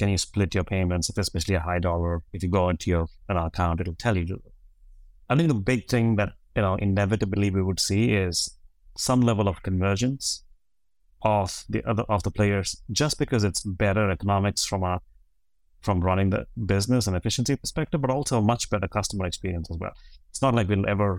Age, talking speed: 30-49, 200 wpm